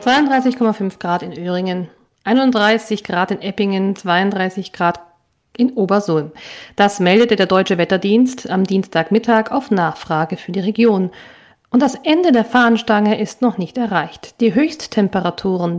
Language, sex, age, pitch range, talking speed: German, female, 40-59, 180-235 Hz, 130 wpm